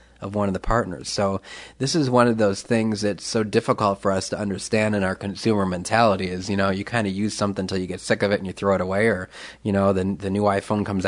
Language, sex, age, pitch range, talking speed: English, male, 30-49, 95-110 Hz, 270 wpm